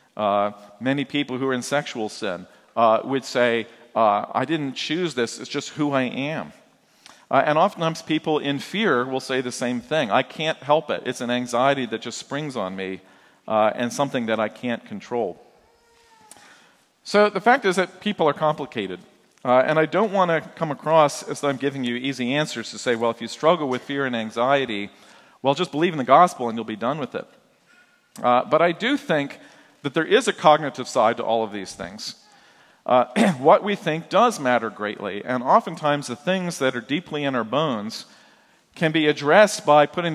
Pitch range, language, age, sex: 120-160 Hz, English, 40-59, male